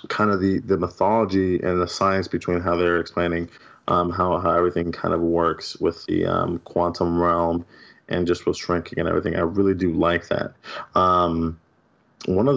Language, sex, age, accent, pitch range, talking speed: English, male, 20-39, American, 85-95 Hz, 180 wpm